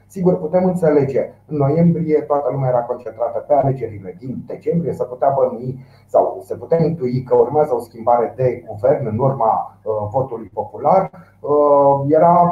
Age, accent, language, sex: 30-49, native, Romanian, male